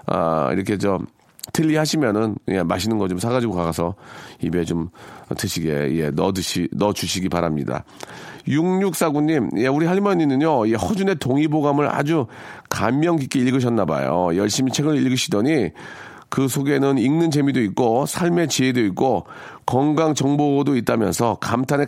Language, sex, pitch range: Korean, male, 110-160 Hz